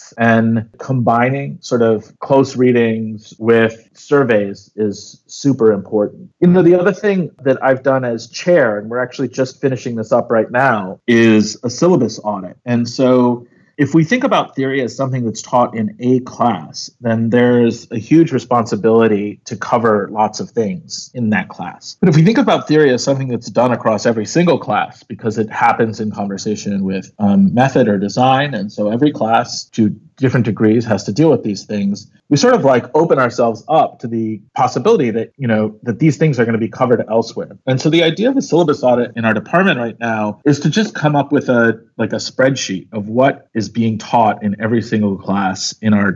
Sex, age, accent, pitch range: male, 40-59, American, 110-135 Hz